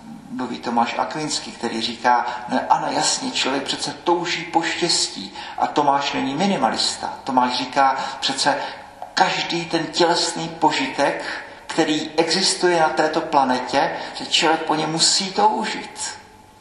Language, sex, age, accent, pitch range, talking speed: Czech, male, 50-69, native, 145-170 Hz, 125 wpm